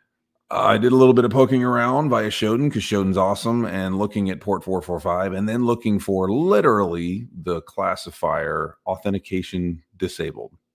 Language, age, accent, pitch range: English, 40-59, American, 75-95 Hz